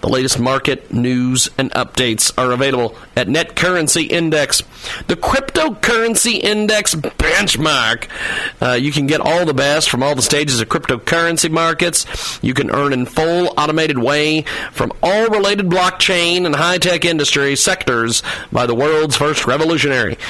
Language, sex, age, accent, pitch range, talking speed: English, male, 40-59, American, 140-185 Hz, 140 wpm